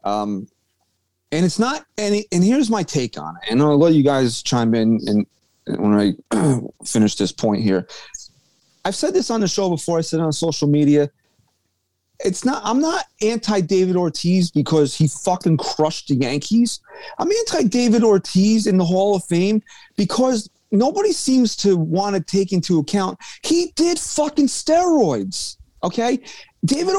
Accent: American